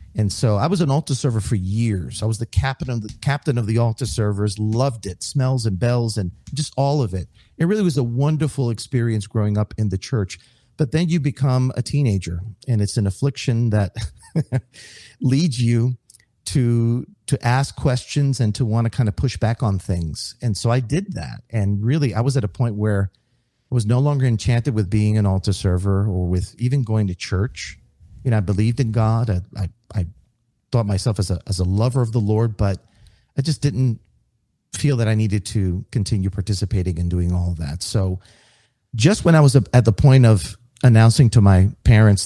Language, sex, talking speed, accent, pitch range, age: English, male, 205 wpm, American, 100-130 Hz, 40-59